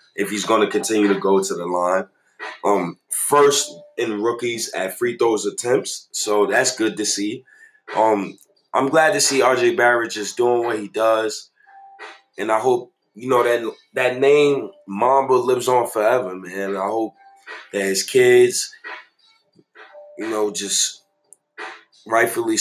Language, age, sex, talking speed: English, 20-39, male, 150 wpm